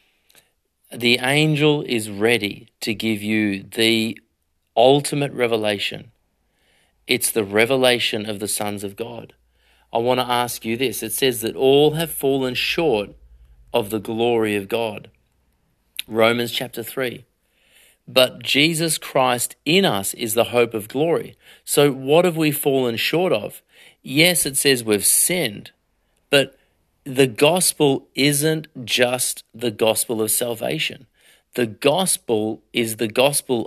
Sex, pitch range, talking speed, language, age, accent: male, 110-140 Hz, 135 wpm, English, 40-59, Australian